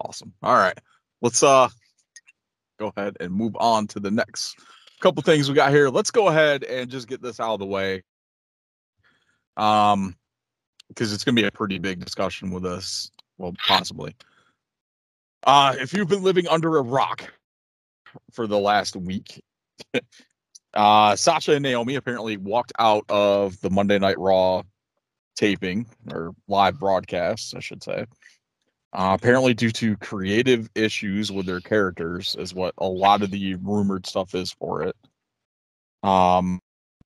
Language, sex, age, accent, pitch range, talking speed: English, male, 30-49, American, 95-115 Hz, 150 wpm